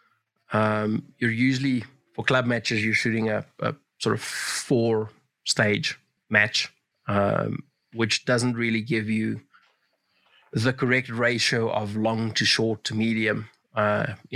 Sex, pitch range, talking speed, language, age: male, 110-125 Hz, 130 wpm, English, 30-49